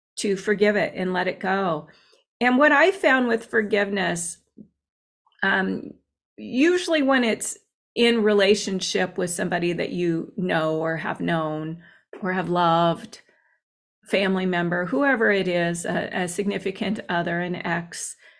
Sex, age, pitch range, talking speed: female, 30-49, 175-215 Hz, 135 wpm